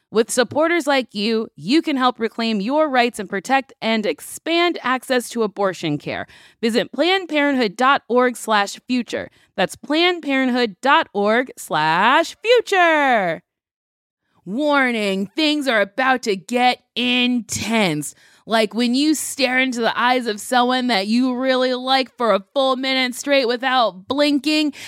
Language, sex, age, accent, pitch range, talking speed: English, female, 20-39, American, 230-320 Hz, 130 wpm